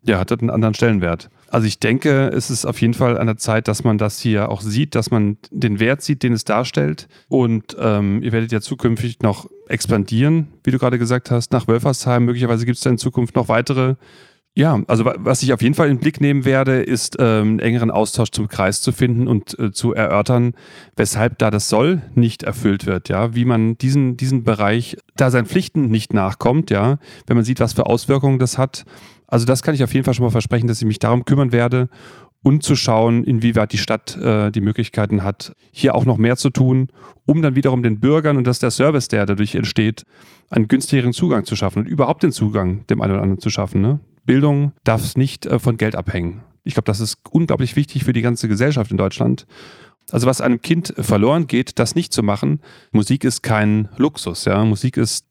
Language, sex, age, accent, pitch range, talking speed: German, male, 30-49, German, 110-130 Hz, 220 wpm